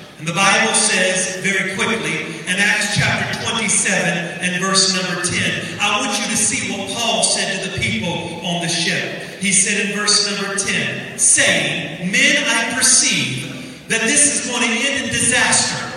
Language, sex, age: English, male, 40-59